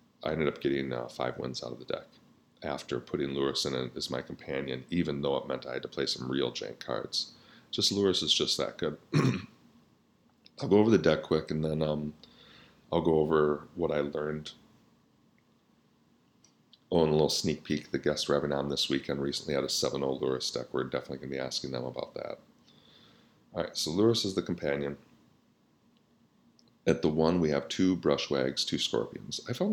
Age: 40-59